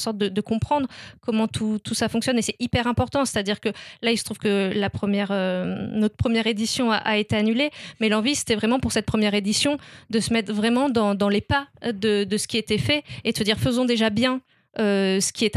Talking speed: 230 wpm